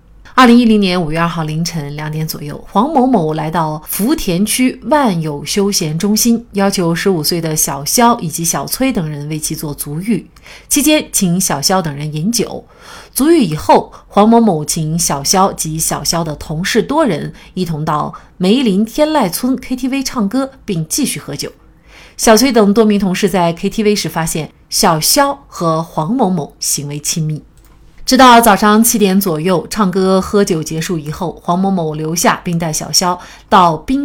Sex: female